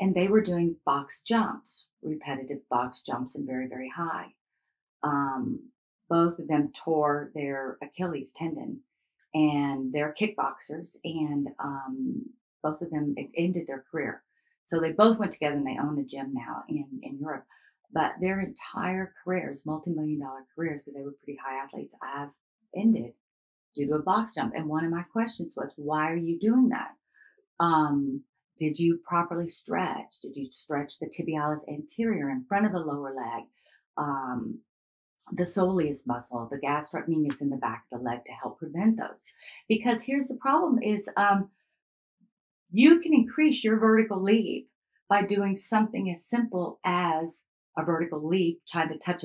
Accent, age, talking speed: American, 40-59, 165 wpm